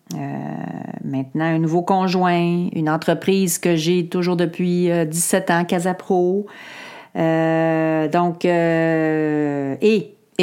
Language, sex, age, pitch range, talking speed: French, female, 40-59, 150-185 Hz, 110 wpm